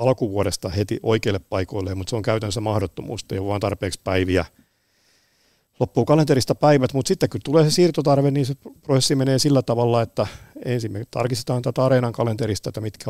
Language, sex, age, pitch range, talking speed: Finnish, male, 50-69, 105-120 Hz, 165 wpm